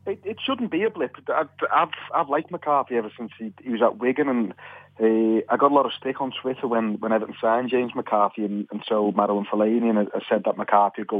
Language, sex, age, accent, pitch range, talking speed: English, male, 30-49, British, 110-125 Hz, 245 wpm